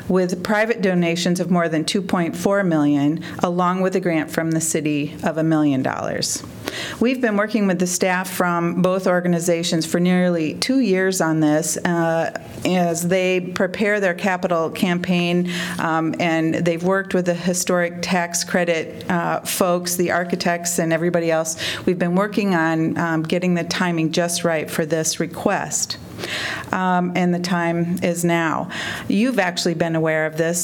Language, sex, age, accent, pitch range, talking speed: English, female, 40-59, American, 165-185 Hz, 160 wpm